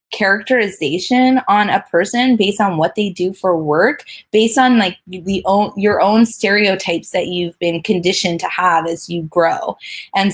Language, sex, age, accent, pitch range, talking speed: English, female, 20-39, American, 170-205 Hz, 170 wpm